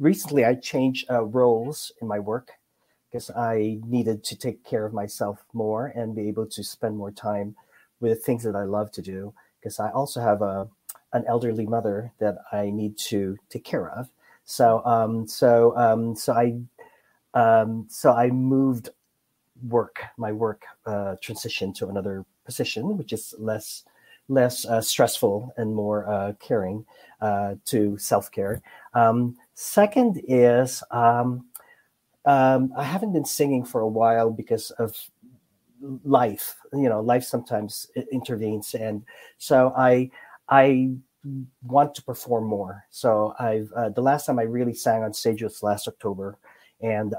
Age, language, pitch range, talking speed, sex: 40-59, English, 105-125 Hz, 155 wpm, male